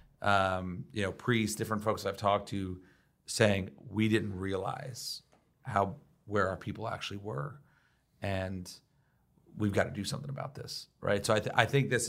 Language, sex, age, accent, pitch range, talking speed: English, male, 40-59, American, 95-115 Hz, 170 wpm